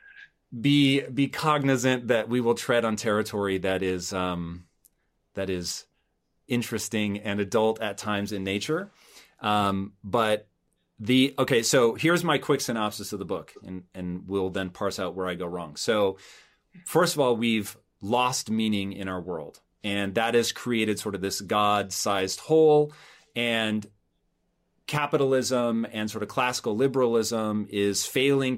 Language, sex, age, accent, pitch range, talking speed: English, male, 30-49, American, 100-125 Hz, 150 wpm